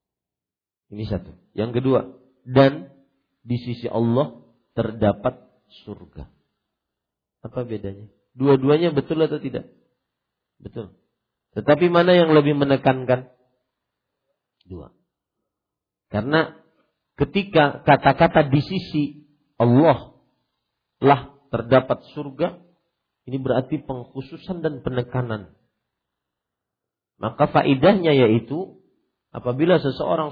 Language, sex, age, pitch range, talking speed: Malay, male, 50-69, 105-140 Hz, 85 wpm